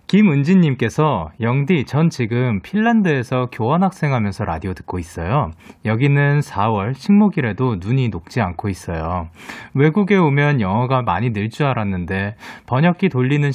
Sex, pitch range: male, 110-185 Hz